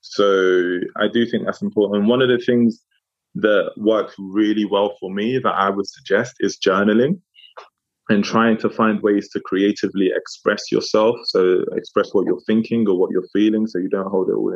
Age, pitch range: 20-39, 105-125 Hz